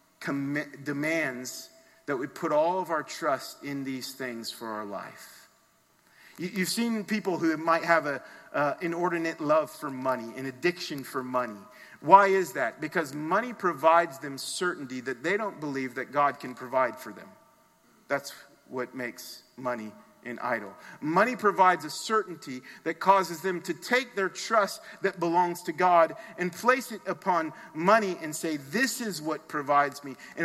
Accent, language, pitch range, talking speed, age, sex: American, English, 140-190 Hz, 160 wpm, 40-59, male